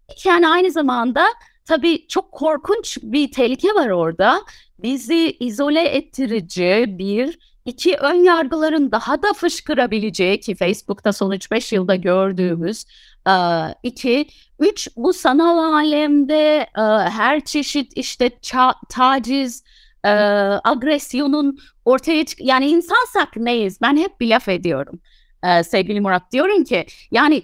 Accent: native